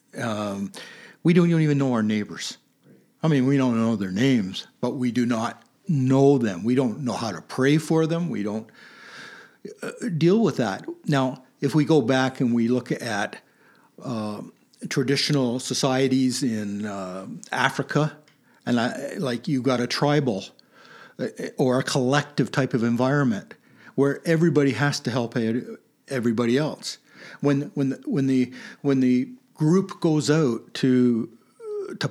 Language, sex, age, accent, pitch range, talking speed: English, male, 60-79, American, 125-160 Hz, 150 wpm